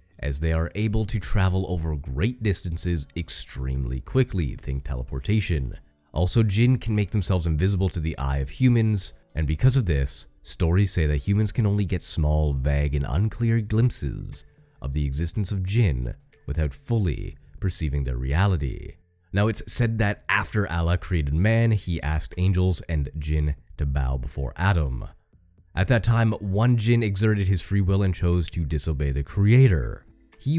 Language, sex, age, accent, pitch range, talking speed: English, male, 30-49, American, 75-105 Hz, 165 wpm